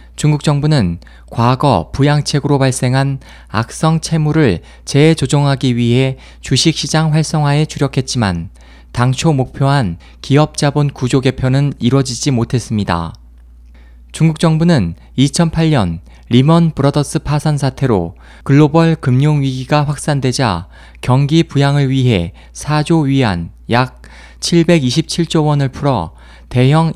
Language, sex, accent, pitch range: Korean, male, native, 105-150 Hz